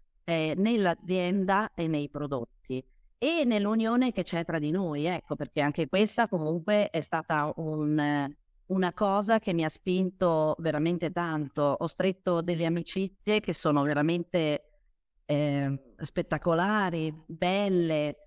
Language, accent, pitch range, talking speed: Italian, native, 150-185 Hz, 120 wpm